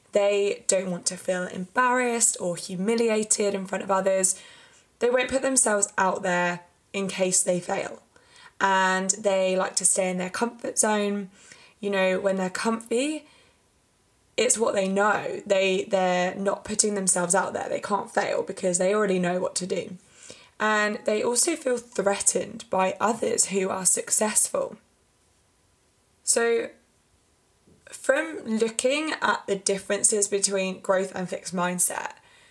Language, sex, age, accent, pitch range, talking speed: English, female, 20-39, British, 190-240 Hz, 140 wpm